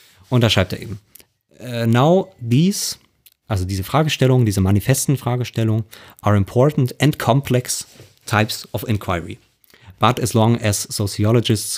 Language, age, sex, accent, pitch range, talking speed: German, 30-49, male, German, 100-120 Hz, 120 wpm